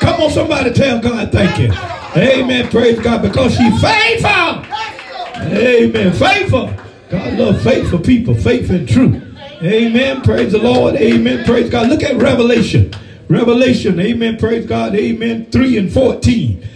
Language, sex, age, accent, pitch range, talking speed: English, male, 50-69, American, 185-270 Hz, 145 wpm